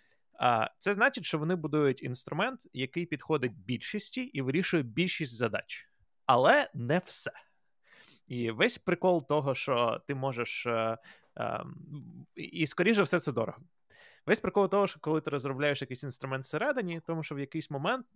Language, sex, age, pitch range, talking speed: Ukrainian, male, 20-39, 135-180 Hz, 140 wpm